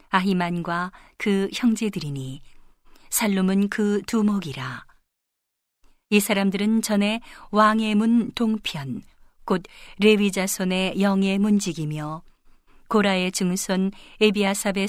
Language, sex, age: Korean, female, 40-59